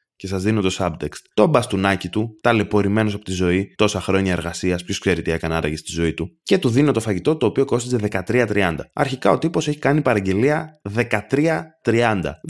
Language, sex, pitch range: Greek, male, 95-135 Hz